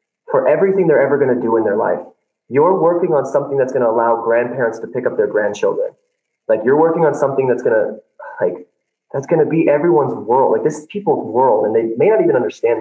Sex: male